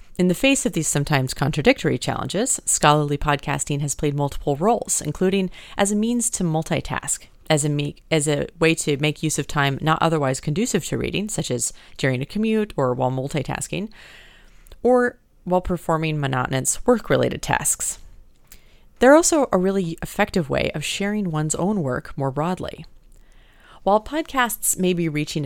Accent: American